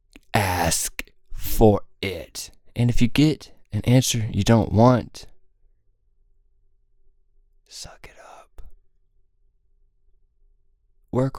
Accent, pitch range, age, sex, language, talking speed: American, 100-135 Hz, 20-39, male, English, 85 wpm